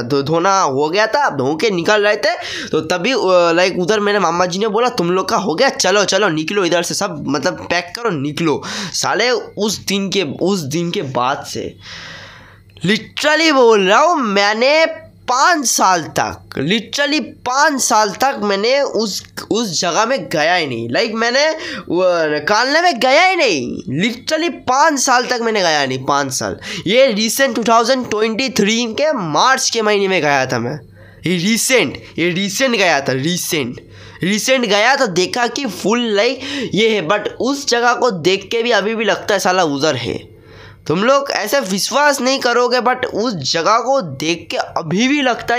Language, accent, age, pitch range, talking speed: Hindi, native, 20-39, 165-245 Hz, 180 wpm